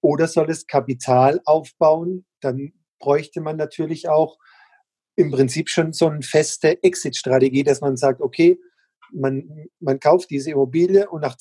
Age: 40-59